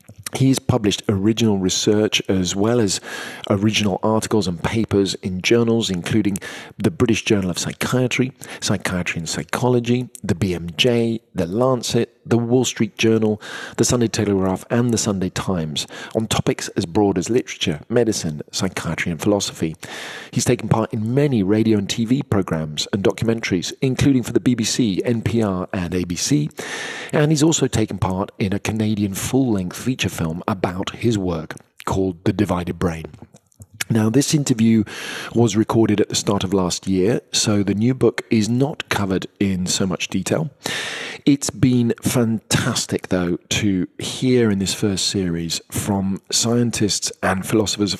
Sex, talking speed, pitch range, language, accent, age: male, 150 wpm, 95-120 Hz, English, British, 40-59